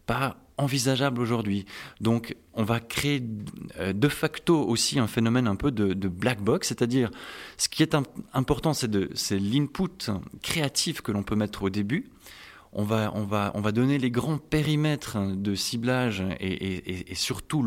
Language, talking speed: French, 170 wpm